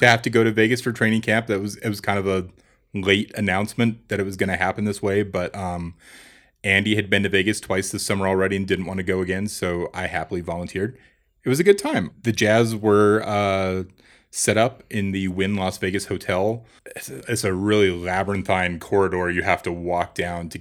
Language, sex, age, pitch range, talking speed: English, male, 30-49, 90-105 Hz, 220 wpm